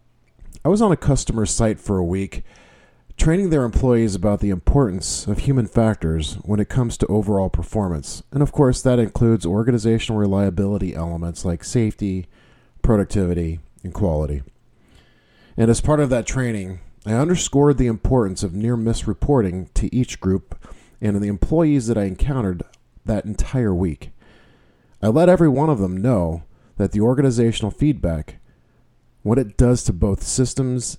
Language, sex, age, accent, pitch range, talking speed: English, male, 40-59, American, 90-125 Hz, 155 wpm